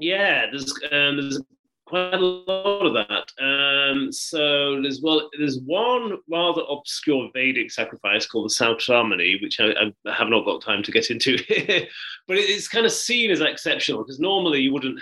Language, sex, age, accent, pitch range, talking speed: English, male, 30-49, British, 115-155 Hz, 175 wpm